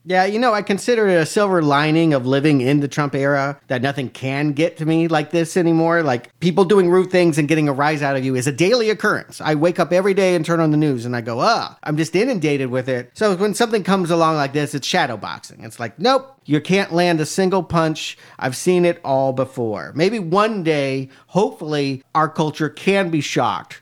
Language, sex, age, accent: English, male, 40-59, American